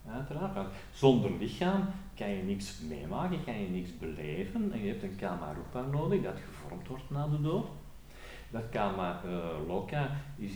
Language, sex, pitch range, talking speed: Dutch, male, 95-145 Hz, 160 wpm